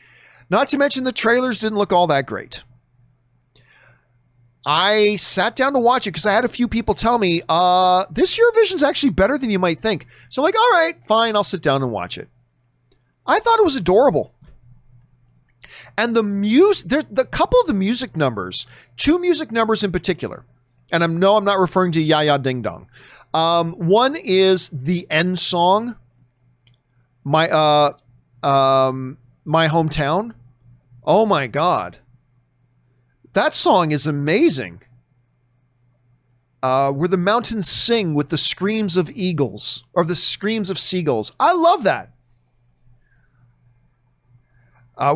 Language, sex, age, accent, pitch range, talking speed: English, male, 40-59, American, 125-210 Hz, 145 wpm